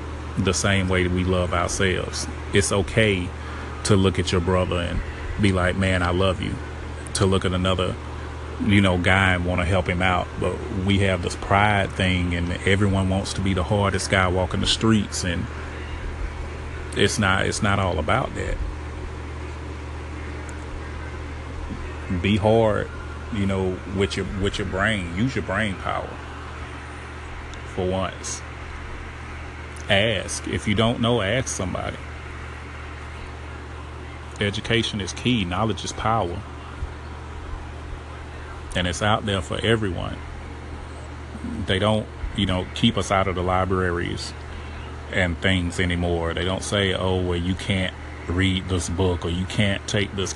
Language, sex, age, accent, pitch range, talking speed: English, male, 30-49, American, 75-95 Hz, 145 wpm